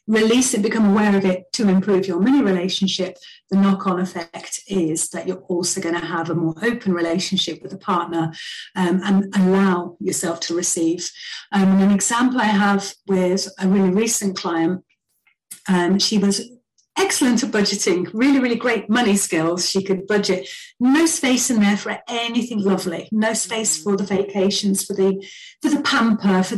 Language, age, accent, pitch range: English, 40-59, British, 185-225 Hz